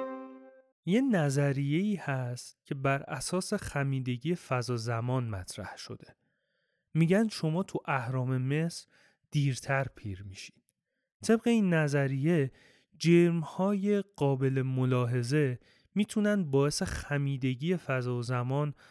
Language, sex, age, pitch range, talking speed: Persian, male, 30-49, 130-165 Hz, 95 wpm